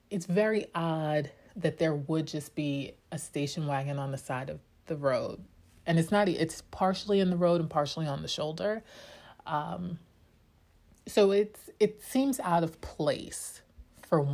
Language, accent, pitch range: English, American, 150-190 Hz